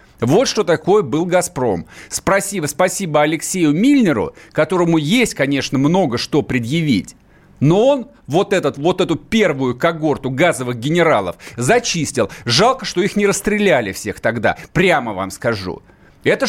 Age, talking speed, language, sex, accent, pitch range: 40-59, 130 wpm, Russian, male, native, 155-200 Hz